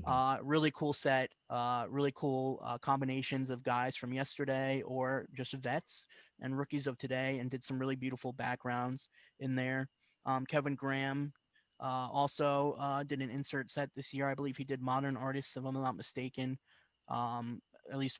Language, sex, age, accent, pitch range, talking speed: English, male, 20-39, American, 125-140 Hz, 175 wpm